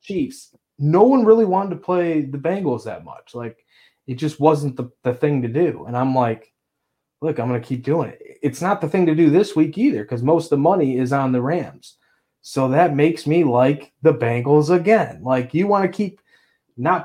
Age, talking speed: 20-39, 215 wpm